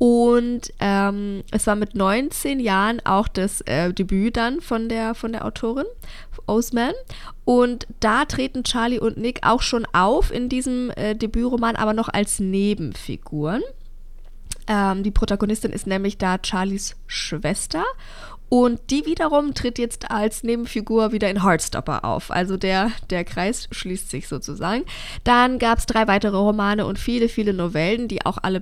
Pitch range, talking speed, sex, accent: 190-235 Hz, 155 wpm, female, German